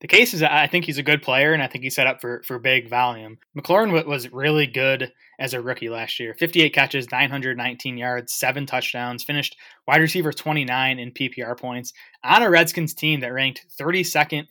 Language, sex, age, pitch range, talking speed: English, male, 20-39, 125-150 Hz, 200 wpm